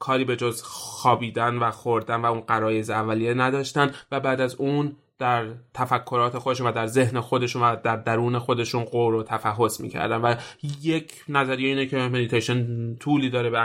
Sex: male